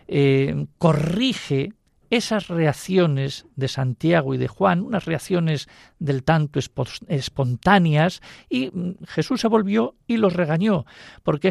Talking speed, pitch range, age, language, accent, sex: 115 wpm, 145-195 Hz, 50-69, Spanish, Spanish, male